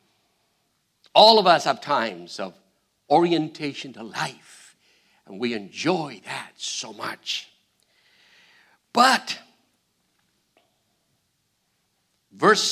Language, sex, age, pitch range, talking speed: English, male, 60-79, 170-250 Hz, 80 wpm